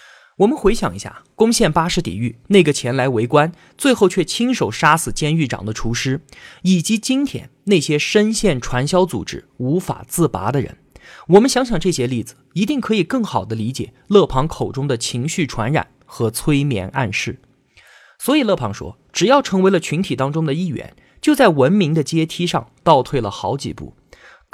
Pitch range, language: 130-200 Hz, Chinese